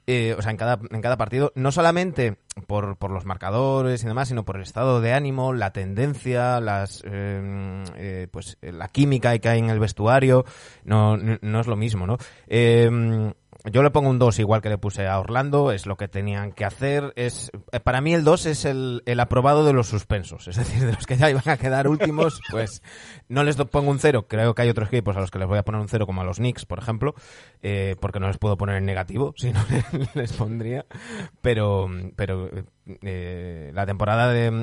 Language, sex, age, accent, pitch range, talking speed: Spanish, male, 20-39, Spanish, 105-135 Hz, 220 wpm